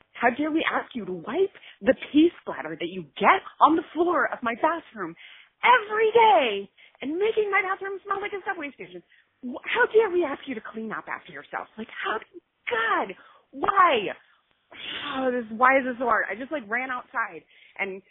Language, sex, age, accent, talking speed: English, female, 30-49, American, 190 wpm